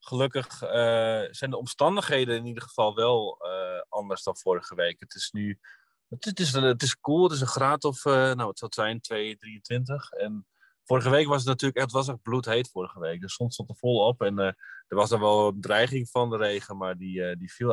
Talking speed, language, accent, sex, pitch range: 235 wpm, Dutch, Dutch, male, 110-140 Hz